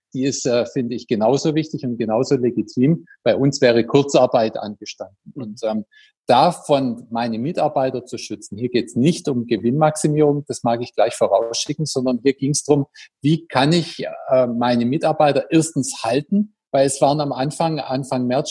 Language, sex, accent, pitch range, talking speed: German, male, German, 120-145 Hz, 170 wpm